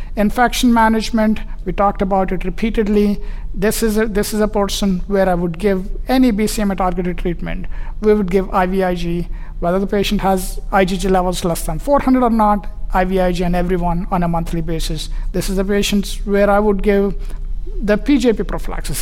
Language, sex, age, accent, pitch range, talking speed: English, male, 60-79, Indian, 185-215 Hz, 175 wpm